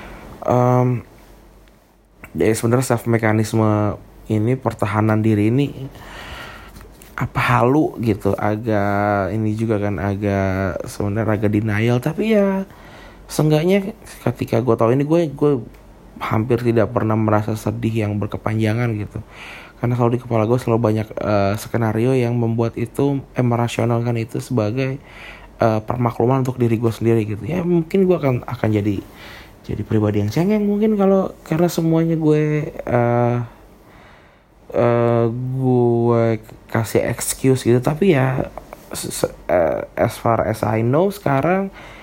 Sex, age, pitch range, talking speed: male, 20-39, 110-125 Hz, 130 wpm